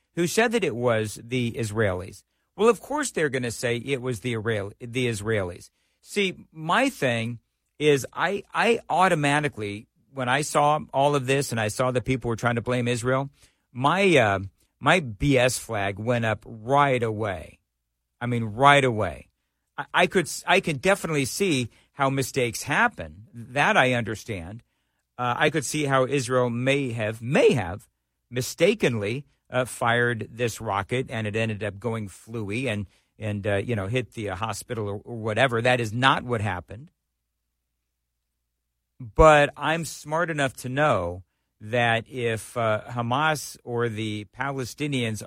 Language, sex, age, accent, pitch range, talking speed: English, male, 50-69, American, 110-140 Hz, 160 wpm